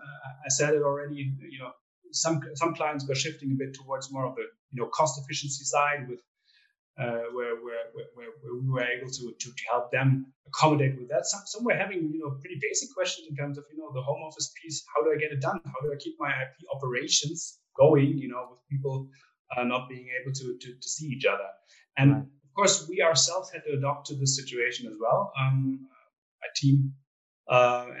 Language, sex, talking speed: English, male, 220 wpm